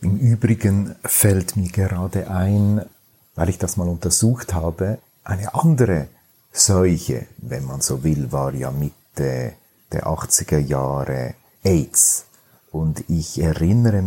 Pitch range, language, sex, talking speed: 80-105 Hz, German, male, 125 wpm